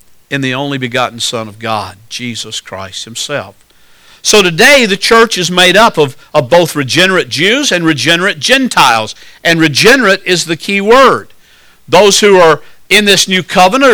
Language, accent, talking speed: English, American, 165 wpm